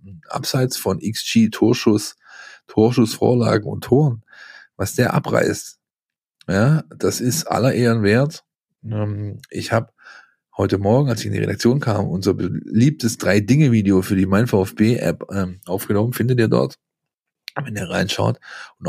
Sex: male